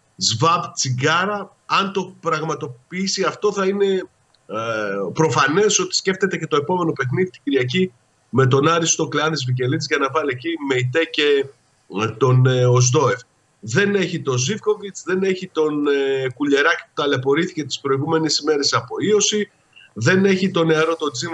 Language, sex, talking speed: Greek, male, 155 wpm